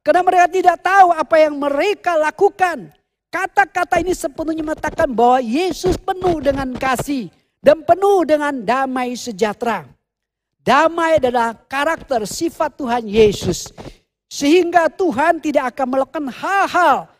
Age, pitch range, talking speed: 50-69, 230-335 Hz, 120 wpm